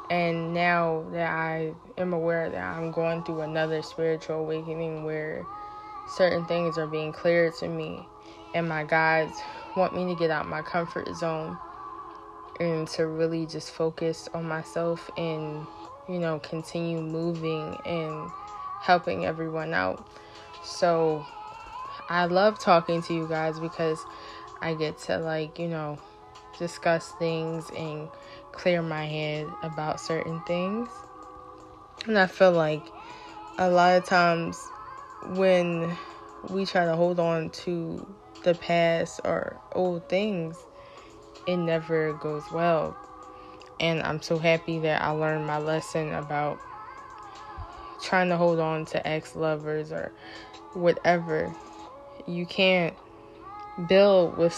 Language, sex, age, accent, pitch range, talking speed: English, female, 20-39, American, 160-180 Hz, 130 wpm